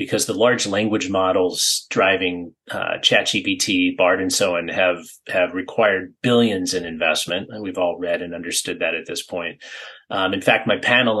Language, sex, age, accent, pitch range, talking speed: English, male, 30-49, American, 90-150 Hz, 175 wpm